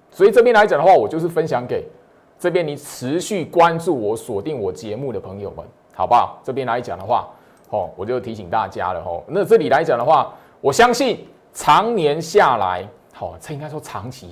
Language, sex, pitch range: Chinese, male, 140-225 Hz